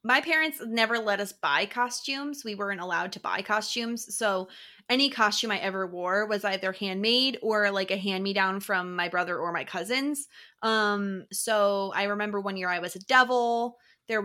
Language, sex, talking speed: English, female, 180 wpm